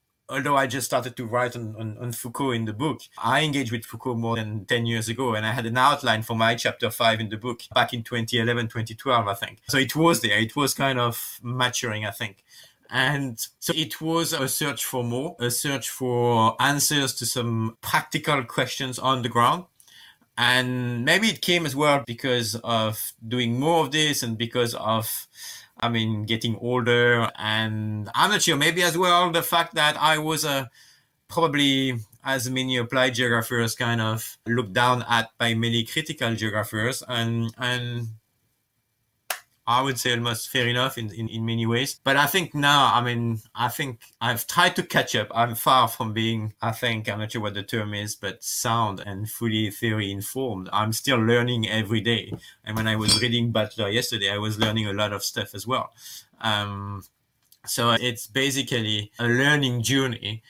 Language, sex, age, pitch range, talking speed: English, male, 30-49, 110-130 Hz, 185 wpm